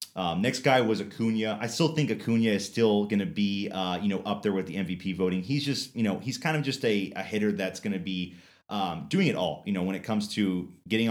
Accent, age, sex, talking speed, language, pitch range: American, 30-49, male, 255 wpm, English, 85-105 Hz